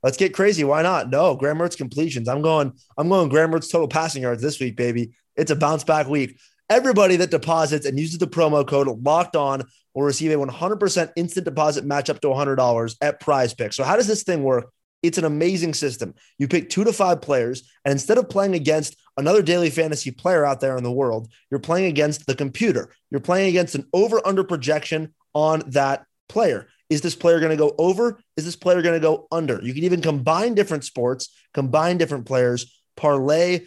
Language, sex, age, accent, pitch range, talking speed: English, male, 30-49, American, 130-170 Hz, 205 wpm